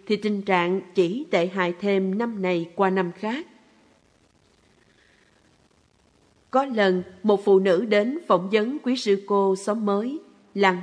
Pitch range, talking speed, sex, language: 185-215 Hz, 145 wpm, female, Vietnamese